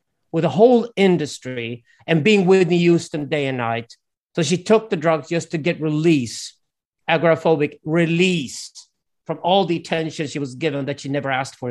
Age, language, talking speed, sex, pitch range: 40-59, English, 180 wpm, male, 145-195 Hz